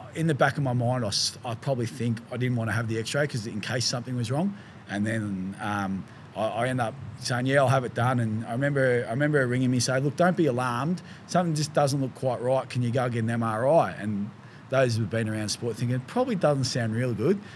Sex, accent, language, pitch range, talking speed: male, Australian, English, 110-130 Hz, 255 wpm